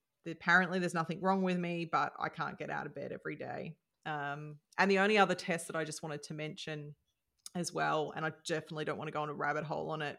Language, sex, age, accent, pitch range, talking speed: English, female, 30-49, Australian, 155-185 Hz, 245 wpm